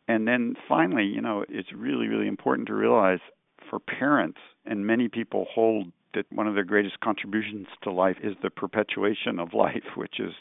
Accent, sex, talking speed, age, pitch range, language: American, male, 185 wpm, 50-69, 90-105 Hz, English